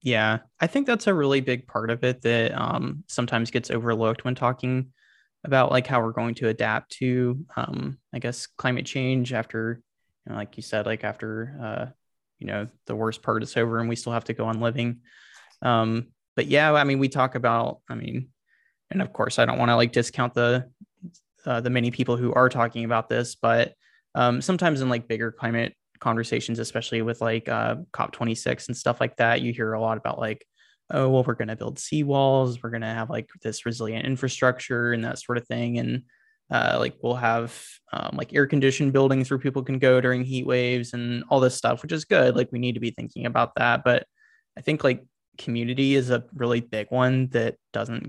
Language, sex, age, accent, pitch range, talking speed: English, male, 20-39, American, 115-130 Hz, 210 wpm